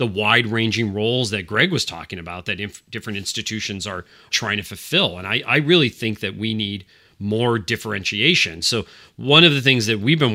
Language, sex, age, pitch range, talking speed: English, male, 30-49, 100-115 Hz, 195 wpm